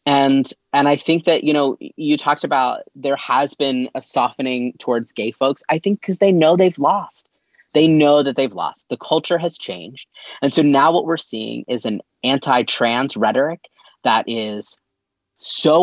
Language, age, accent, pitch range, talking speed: English, 30-49, American, 115-150 Hz, 180 wpm